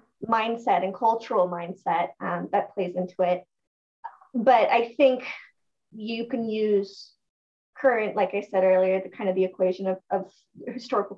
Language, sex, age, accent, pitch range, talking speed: English, female, 20-39, American, 185-220 Hz, 150 wpm